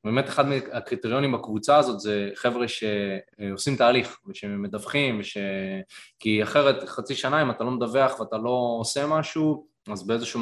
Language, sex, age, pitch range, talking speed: Hebrew, male, 20-39, 110-150 Hz, 145 wpm